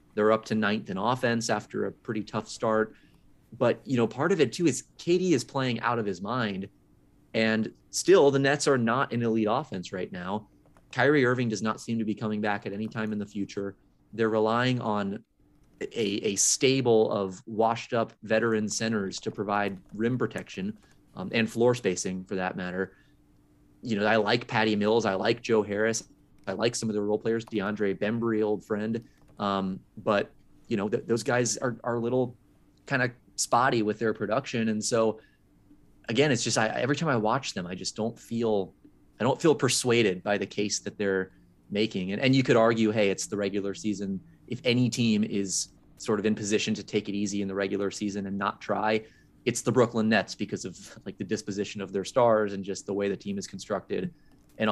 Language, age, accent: English, 30-49, American